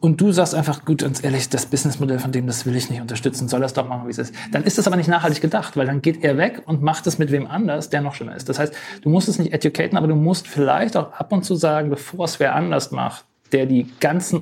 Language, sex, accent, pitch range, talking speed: German, male, German, 135-165 Hz, 285 wpm